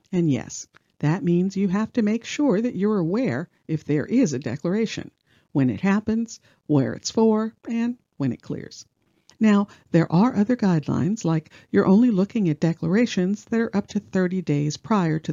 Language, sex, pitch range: English, female, 150-210 Hz